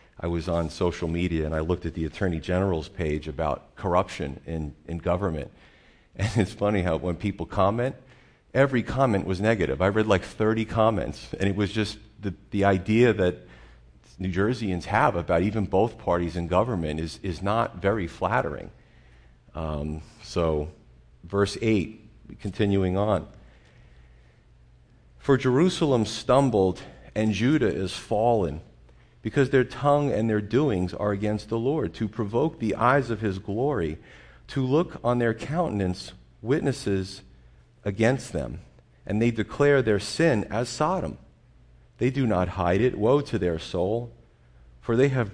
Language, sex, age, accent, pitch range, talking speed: English, male, 40-59, American, 85-115 Hz, 150 wpm